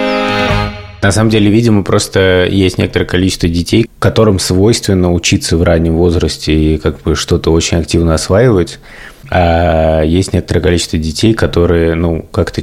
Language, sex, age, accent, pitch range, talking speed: Russian, male, 20-39, native, 85-100 Hz, 145 wpm